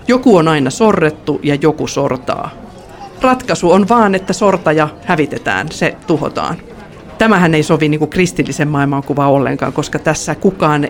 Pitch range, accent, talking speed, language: 140-170 Hz, native, 140 wpm, Finnish